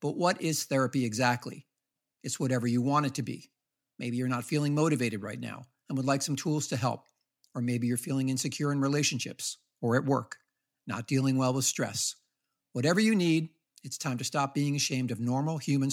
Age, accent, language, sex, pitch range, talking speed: 50-69, American, English, male, 125-150 Hz, 200 wpm